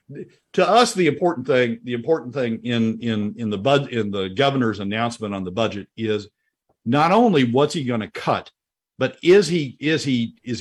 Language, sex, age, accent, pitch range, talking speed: English, male, 50-69, American, 100-130 Hz, 180 wpm